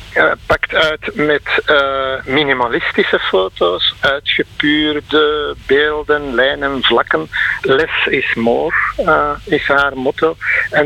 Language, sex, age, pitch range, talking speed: Dutch, male, 60-79, 135-165 Hz, 100 wpm